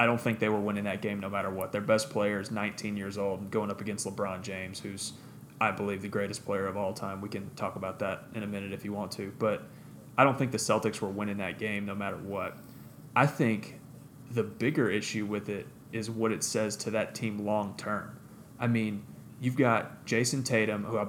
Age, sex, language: 30-49, male, English